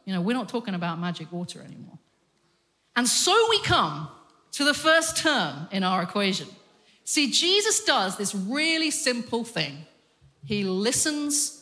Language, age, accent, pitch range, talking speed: English, 40-59, British, 185-280 Hz, 140 wpm